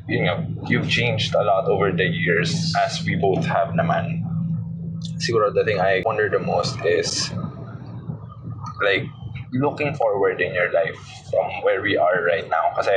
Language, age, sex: English, 20-39, male